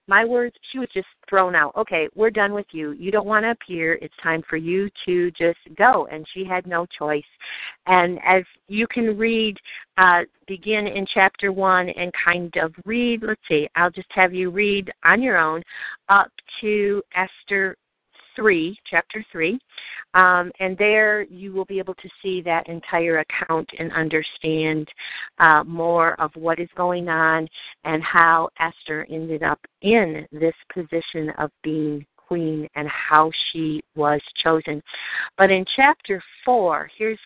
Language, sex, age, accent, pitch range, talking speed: English, female, 50-69, American, 165-200 Hz, 165 wpm